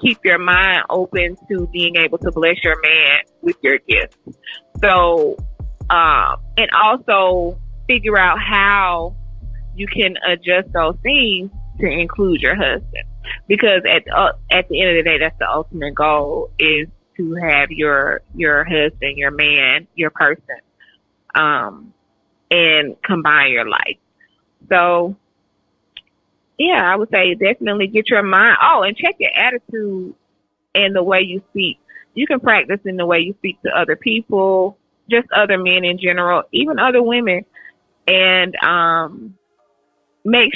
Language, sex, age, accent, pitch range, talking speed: English, female, 30-49, American, 170-225 Hz, 145 wpm